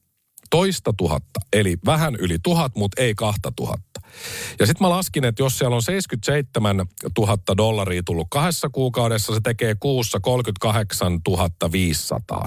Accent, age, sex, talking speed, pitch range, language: native, 50-69, male, 140 wpm, 95-130 Hz, Finnish